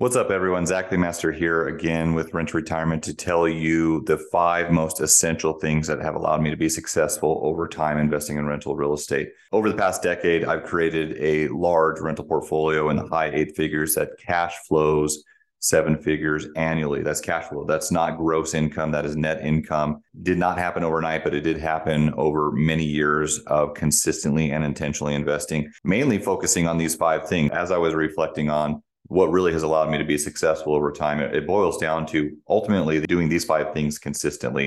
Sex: male